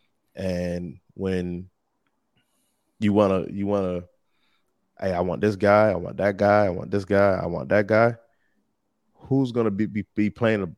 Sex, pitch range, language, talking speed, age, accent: male, 95-115 Hz, English, 160 wpm, 20-39, American